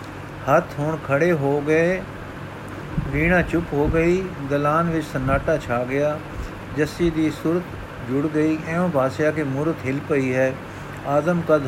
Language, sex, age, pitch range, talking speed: Punjabi, male, 50-69, 135-165 Hz, 145 wpm